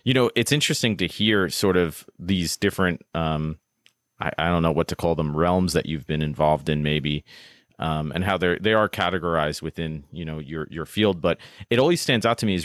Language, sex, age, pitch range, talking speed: English, male, 30-49, 80-95 Hz, 225 wpm